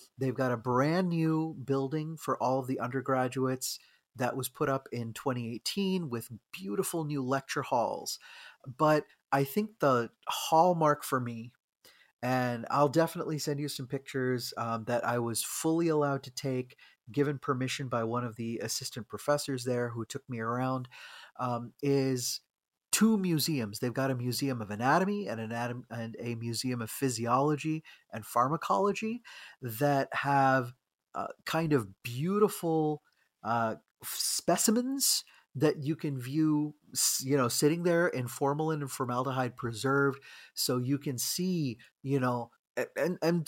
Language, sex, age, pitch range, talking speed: English, male, 30-49, 125-155 Hz, 145 wpm